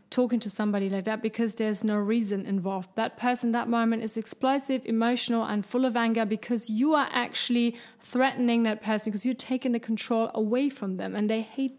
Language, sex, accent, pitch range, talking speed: German, female, German, 215-255 Hz, 200 wpm